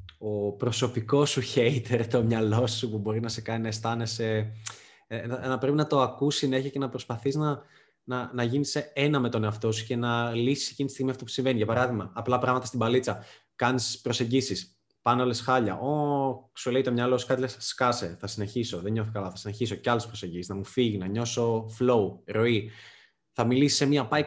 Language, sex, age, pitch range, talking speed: Greek, male, 20-39, 110-135 Hz, 210 wpm